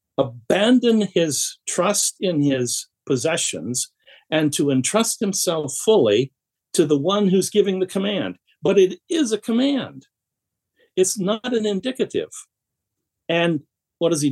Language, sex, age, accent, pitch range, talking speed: English, male, 60-79, American, 125-190 Hz, 130 wpm